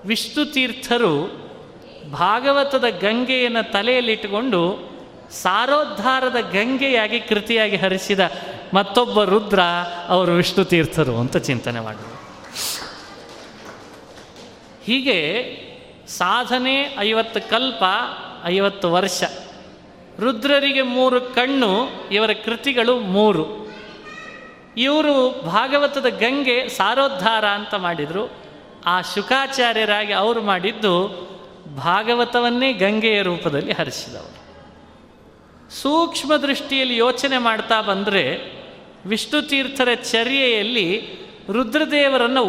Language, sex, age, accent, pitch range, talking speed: Kannada, male, 30-49, native, 190-255 Hz, 70 wpm